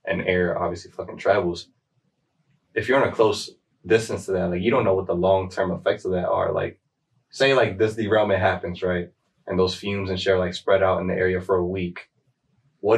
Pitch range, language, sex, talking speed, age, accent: 90-100 Hz, English, male, 215 wpm, 20-39, American